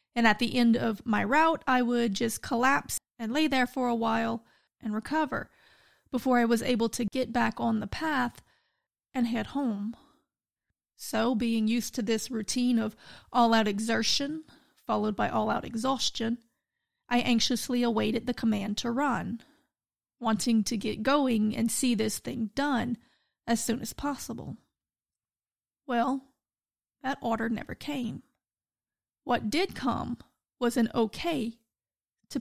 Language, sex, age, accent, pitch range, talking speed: English, female, 30-49, American, 225-260 Hz, 145 wpm